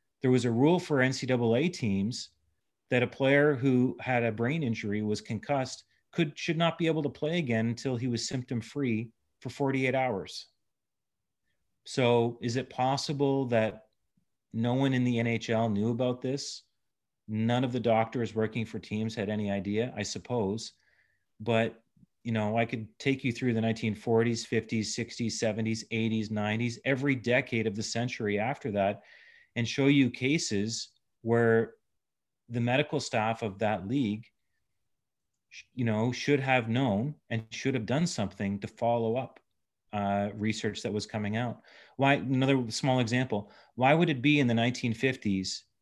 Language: English